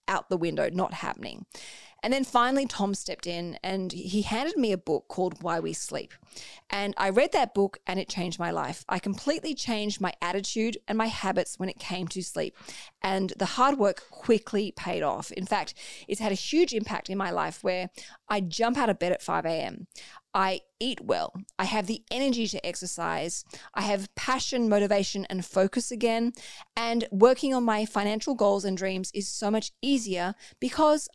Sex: female